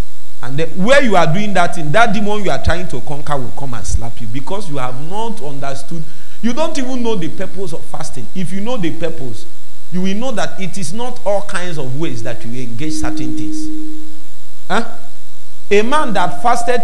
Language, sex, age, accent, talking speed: English, male, 40-59, Nigerian, 205 wpm